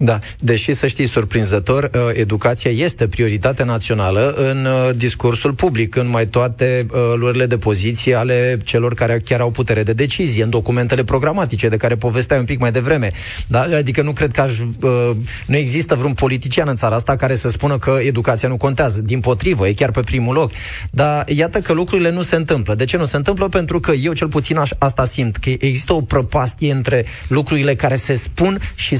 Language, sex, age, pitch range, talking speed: Romanian, male, 30-49, 120-150 Hz, 190 wpm